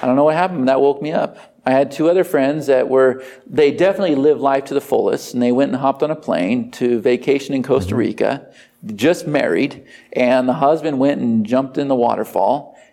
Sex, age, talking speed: male, 40-59, 220 wpm